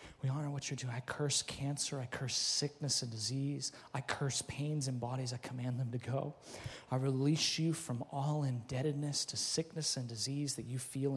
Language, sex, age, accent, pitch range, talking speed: English, male, 30-49, American, 140-175 Hz, 195 wpm